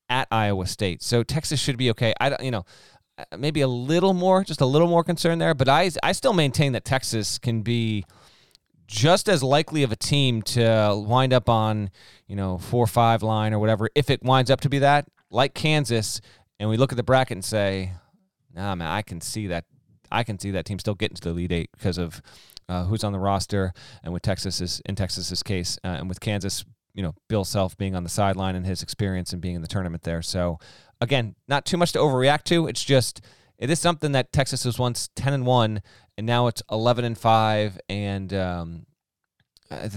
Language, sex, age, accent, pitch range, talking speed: English, male, 30-49, American, 100-135 Hz, 215 wpm